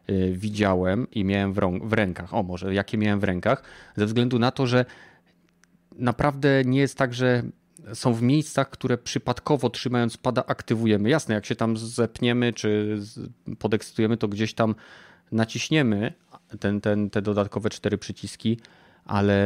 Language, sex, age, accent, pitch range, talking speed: Polish, male, 30-49, native, 105-125 Hz, 140 wpm